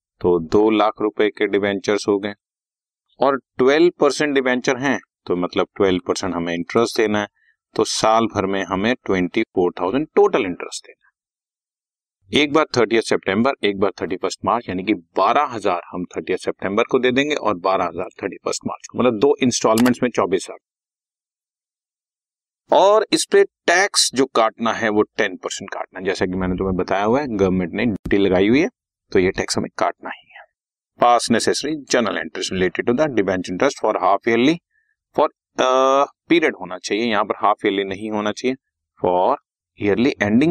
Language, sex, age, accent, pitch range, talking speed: Hindi, male, 40-59, native, 95-140 Hz, 145 wpm